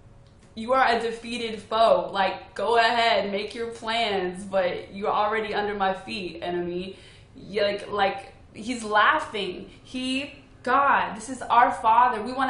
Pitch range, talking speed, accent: 205-250 Hz, 150 wpm, American